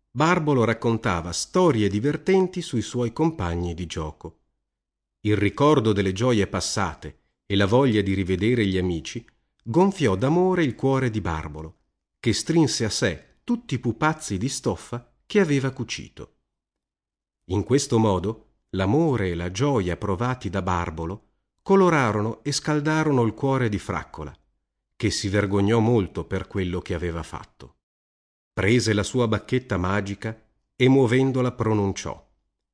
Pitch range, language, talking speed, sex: 90-130 Hz, Italian, 135 wpm, male